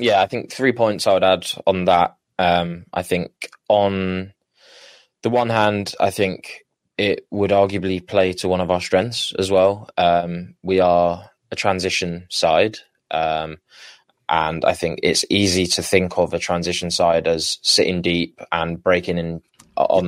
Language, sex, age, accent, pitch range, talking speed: English, male, 20-39, British, 90-95 Hz, 165 wpm